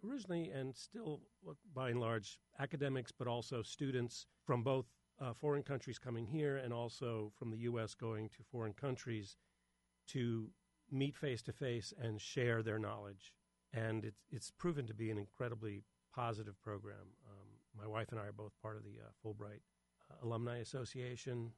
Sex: male